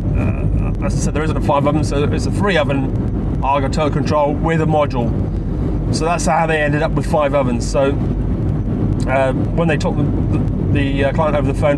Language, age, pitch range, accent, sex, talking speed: English, 30-49, 105-150 Hz, British, male, 205 wpm